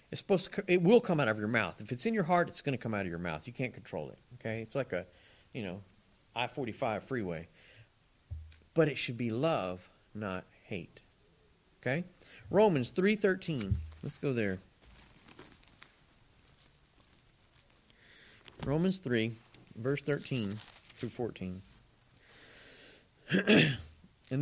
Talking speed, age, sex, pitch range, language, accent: 135 wpm, 40-59, male, 105-160 Hz, English, American